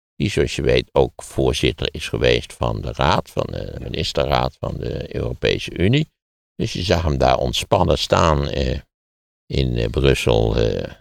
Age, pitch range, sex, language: 60-79, 65-90 Hz, male, Dutch